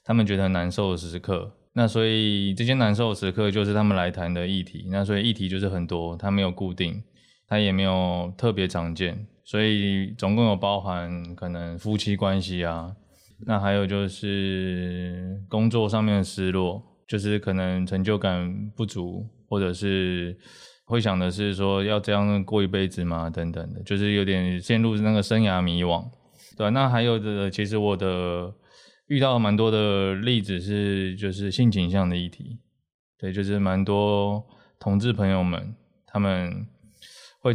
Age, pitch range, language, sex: 20-39, 95-105 Hz, Chinese, male